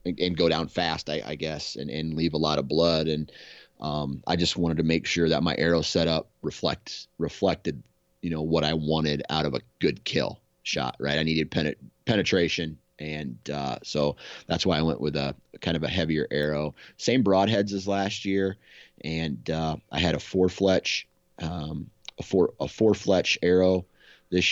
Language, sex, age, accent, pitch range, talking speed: English, male, 30-49, American, 80-90 Hz, 190 wpm